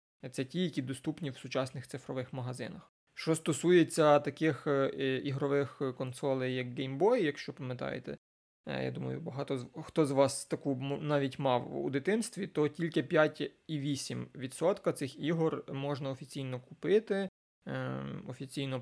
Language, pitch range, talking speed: Ukrainian, 130-155 Hz, 125 wpm